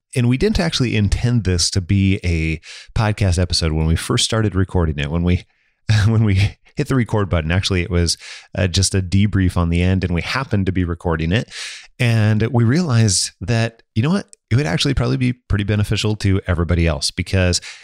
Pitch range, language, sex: 90-115 Hz, English, male